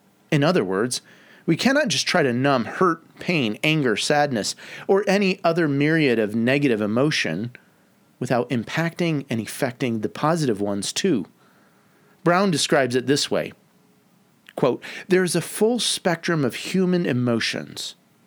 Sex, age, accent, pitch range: male, 40-59, American, 125-170 Hz